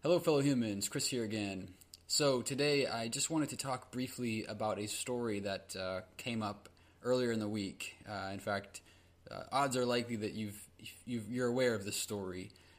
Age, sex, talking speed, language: 20-39, male, 190 wpm, English